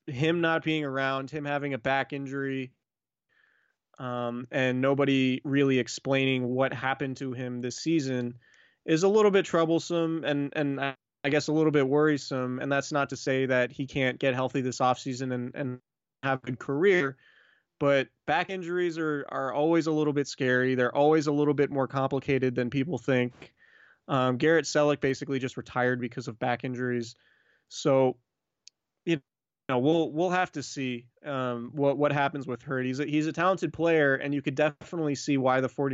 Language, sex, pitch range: English, male, 125-145 Hz